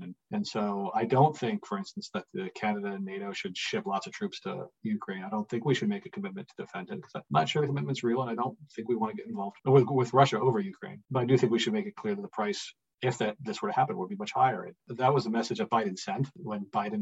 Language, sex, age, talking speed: English, male, 40-59, 295 wpm